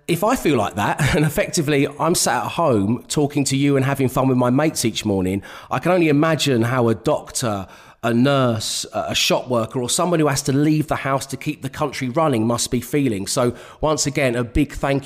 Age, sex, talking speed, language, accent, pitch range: 30-49, male, 225 wpm, English, British, 120-165 Hz